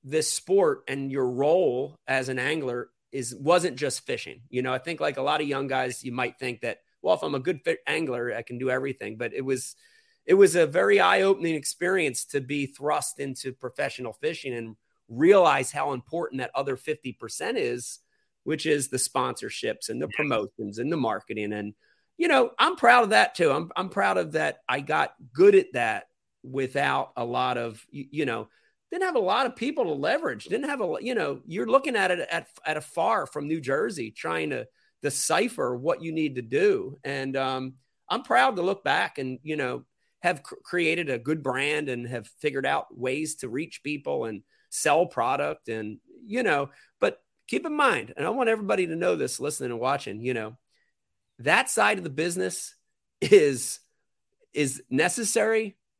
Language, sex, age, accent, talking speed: English, male, 30-49, American, 195 wpm